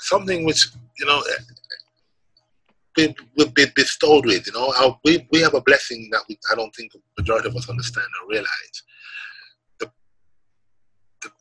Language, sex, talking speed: English, male, 155 wpm